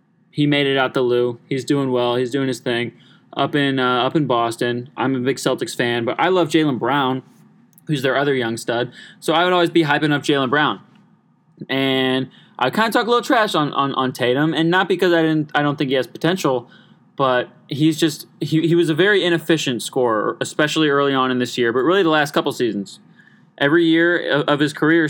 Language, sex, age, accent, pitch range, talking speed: English, male, 20-39, American, 130-170 Hz, 225 wpm